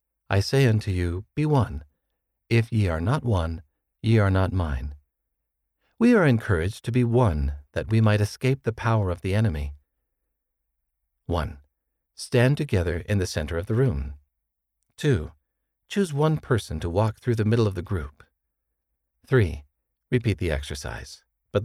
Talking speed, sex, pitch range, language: 155 wpm, male, 75-115 Hz, English